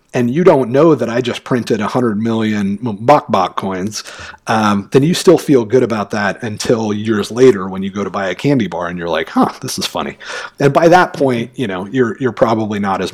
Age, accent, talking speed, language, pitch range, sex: 40-59, American, 235 wpm, English, 105-135 Hz, male